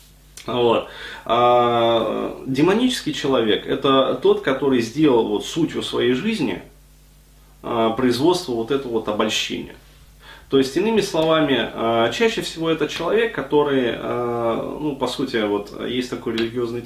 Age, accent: 30-49, native